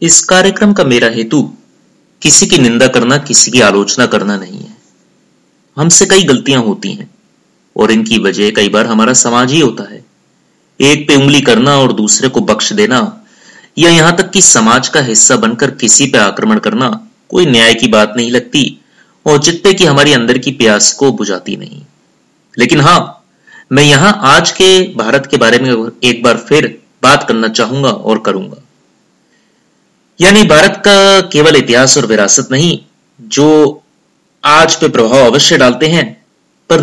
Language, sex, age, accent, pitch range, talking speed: Hindi, male, 30-49, native, 120-170 Hz, 165 wpm